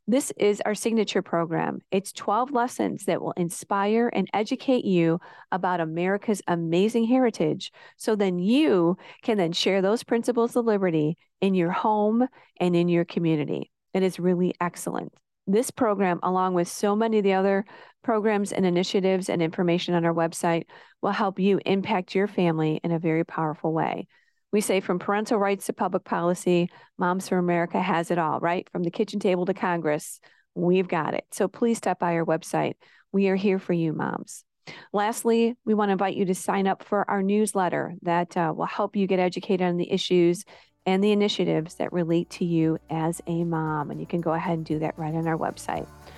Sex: female